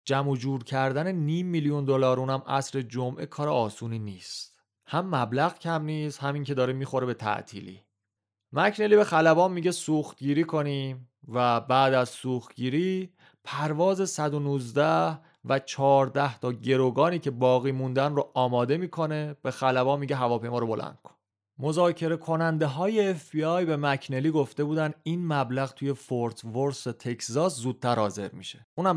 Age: 30-49